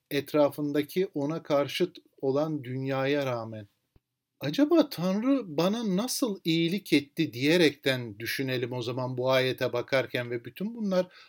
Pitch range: 140-185 Hz